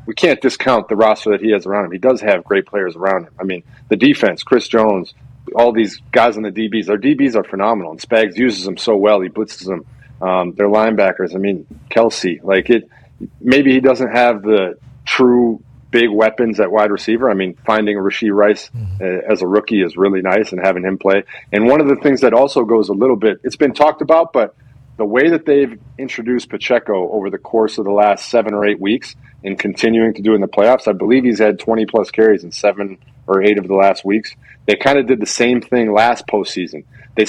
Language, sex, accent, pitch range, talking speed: English, male, American, 100-125 Hz, 225 wpm